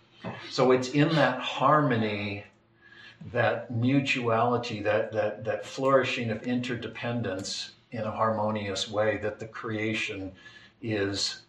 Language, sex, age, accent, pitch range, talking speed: English, male, 60-79, American, 110-125 Hz, 105 wpm